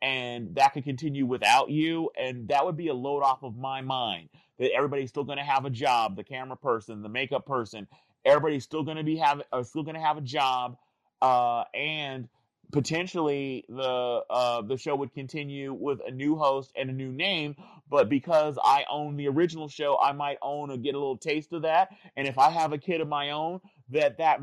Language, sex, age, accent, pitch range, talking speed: English, male, 30-49, American, 130-150 Hz, 215 wpm